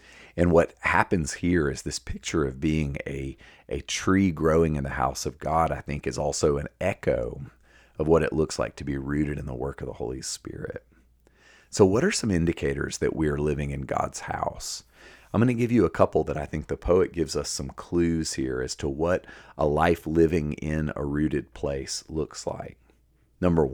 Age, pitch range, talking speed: 40-59, 70-80 Hz, 205 wpm